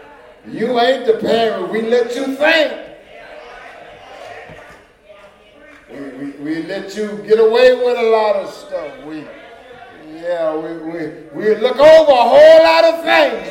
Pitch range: 220-295 Hz